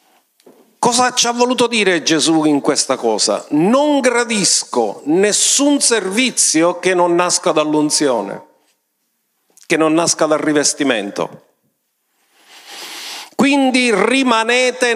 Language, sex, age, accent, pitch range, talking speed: Italian, male, 50-69, native, 195-250 Hz, 95 wpm